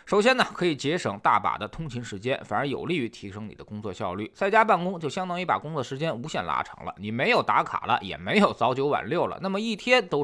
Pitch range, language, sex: 140-215 Hz, Chinese, male